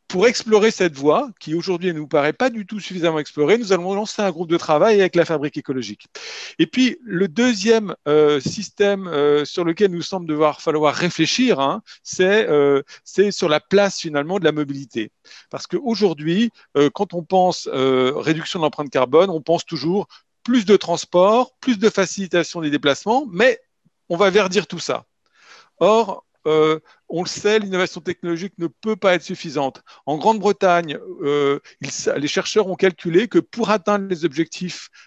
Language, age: French, 50-69